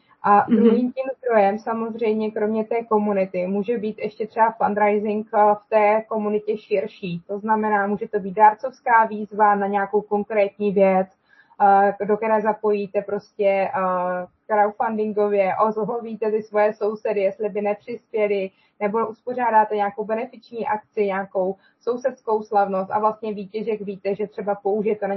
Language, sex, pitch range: Czech, female, 205-235 Hz